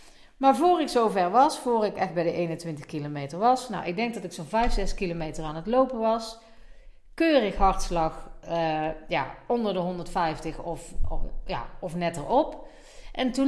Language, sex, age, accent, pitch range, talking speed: Dutch, female, 40-59, Dutch, 170-240 Hz, 185 wpm